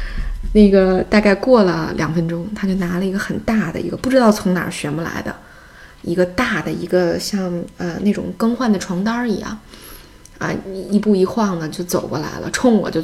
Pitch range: 180-220 Hz